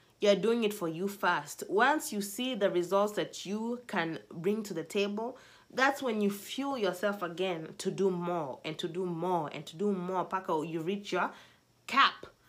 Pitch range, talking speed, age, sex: 180-240 Hz, 185 wpm, 30-49, female